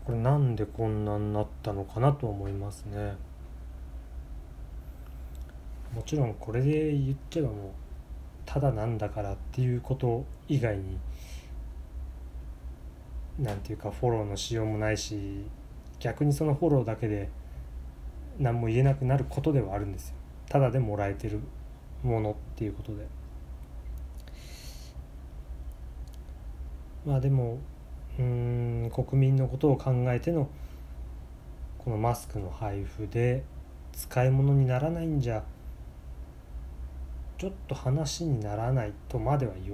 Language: Japanese